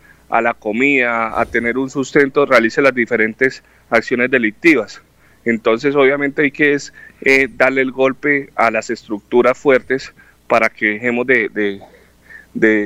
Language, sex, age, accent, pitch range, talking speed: Spanish, male, 30-49, Colombian, 105-125 Hz, 150 wpm